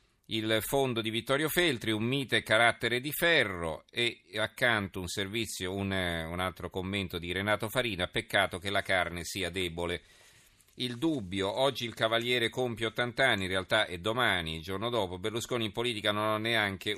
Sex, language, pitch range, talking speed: male, Italian, 95-115 Hz, 170 wpm